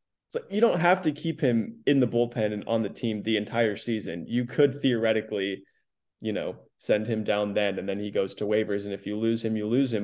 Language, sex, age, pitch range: English, male, 20-39, 110-130 Hz